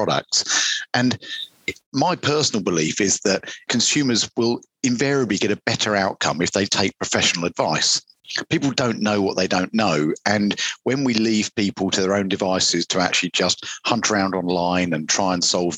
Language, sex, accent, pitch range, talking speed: English, male, British, 90-105 Hz, 170 wpm